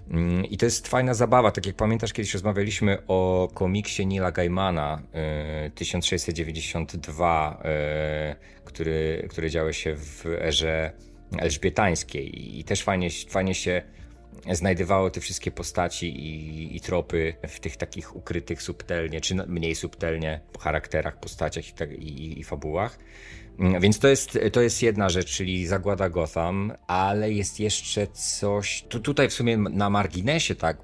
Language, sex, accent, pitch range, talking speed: Polish, male, native, 85-100 Hz, 135 wpm